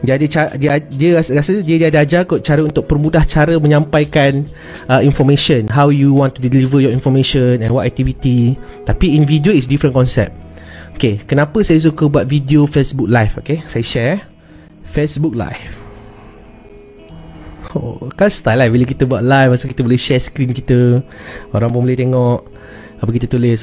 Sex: male